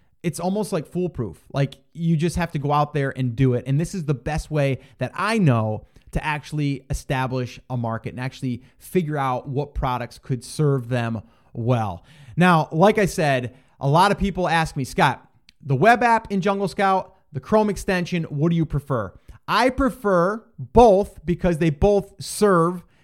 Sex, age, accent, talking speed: male, 30-49, American, 180 wpm